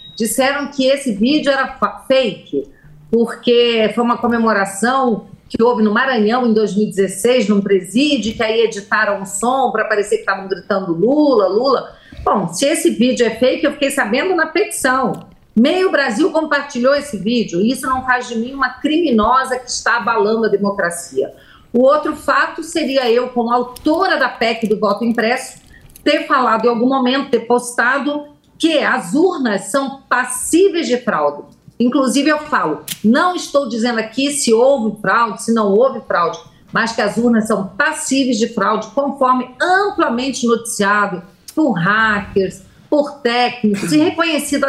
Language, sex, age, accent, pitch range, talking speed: English, female, 50-69, Brazilian, 220-280 Hz, 155 wpm